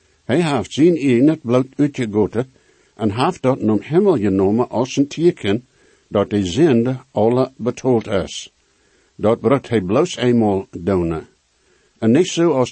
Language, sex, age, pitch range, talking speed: English, male, 60-79, 105-130 Hz, 145 wpm